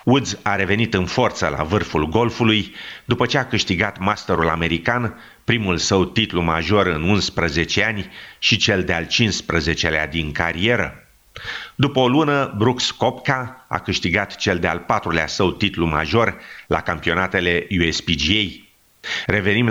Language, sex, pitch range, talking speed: English, male, 85-115 Hz, 135 wpm